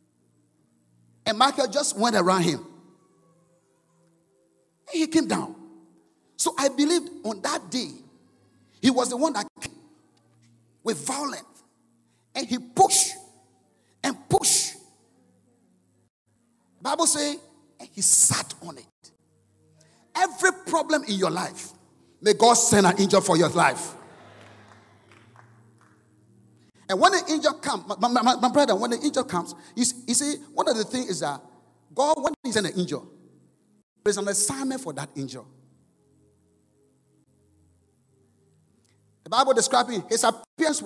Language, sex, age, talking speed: English, male, 50-69, 130 wpm